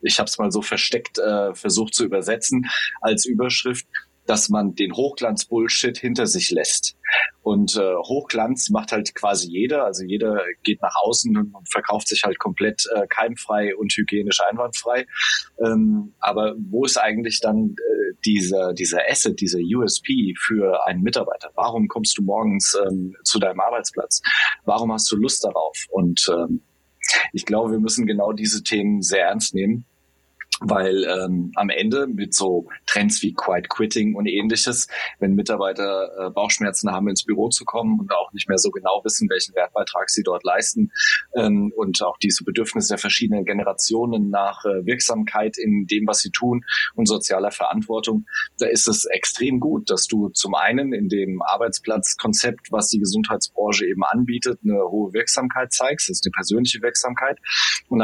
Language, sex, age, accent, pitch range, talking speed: German, male, 30-49, German, 100-130 Hz, 165 wpm